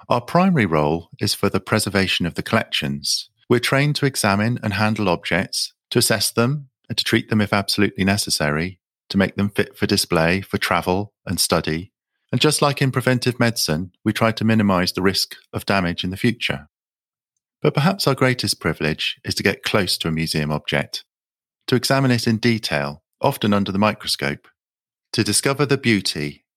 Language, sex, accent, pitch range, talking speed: English, male, British, 85-120 Hz, 180 wpm